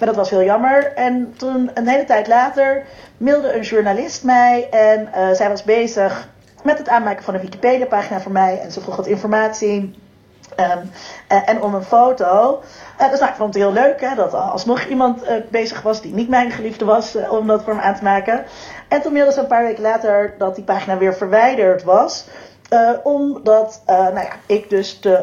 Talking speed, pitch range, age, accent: 220 wpm, 200-250 Hz, 40-59, Dutch